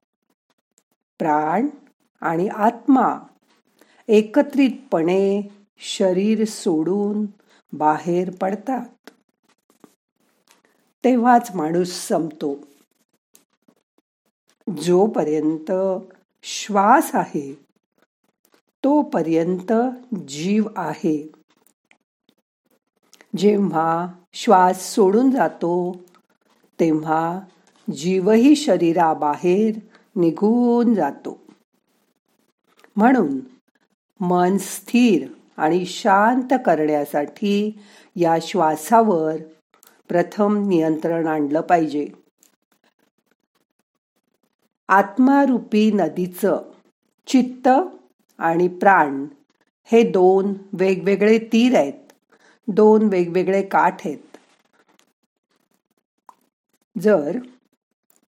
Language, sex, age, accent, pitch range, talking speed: Marathi, female, 50-69, native, 170-230 Hz, 55 wpm